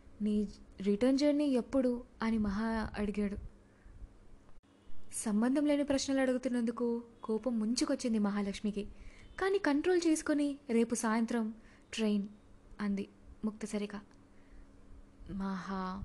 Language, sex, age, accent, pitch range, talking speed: Telugu, female, 20-39, native, 205-260 Hz, 90 wpm